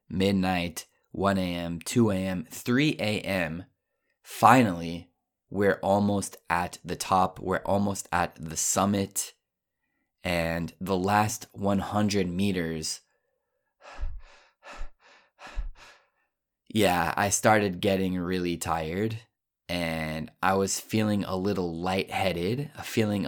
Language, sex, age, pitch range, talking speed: Italian, male, 20-39, 85-115 Hz, 95 wpm